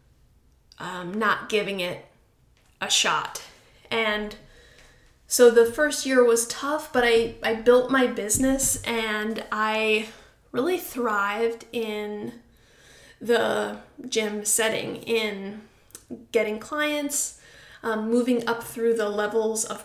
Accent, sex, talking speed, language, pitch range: American, female, 110 wpm, English, 215-245 Hz